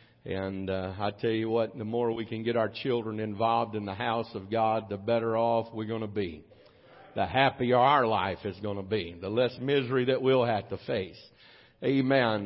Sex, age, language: male, 50-69, English